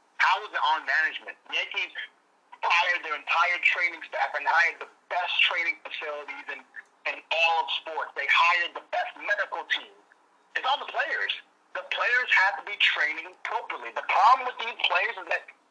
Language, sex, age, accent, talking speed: English, male, 40-59, American, 175 wpm